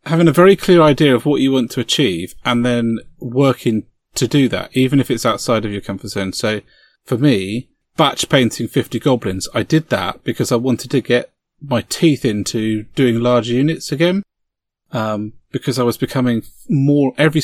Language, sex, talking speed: English, male, 185 wpm